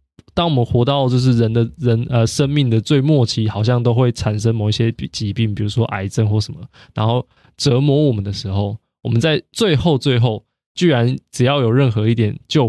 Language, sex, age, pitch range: Chinese, male, 20-39, 110-140 Hz